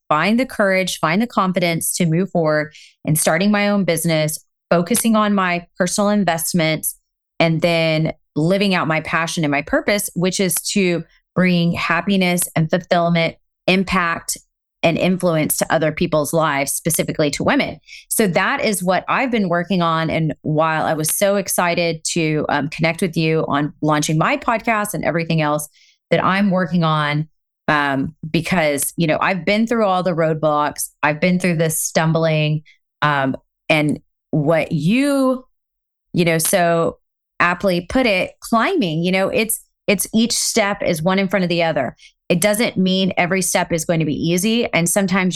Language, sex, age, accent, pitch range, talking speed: English, female, 30-49, American, 160-200 Hz, 165 wpm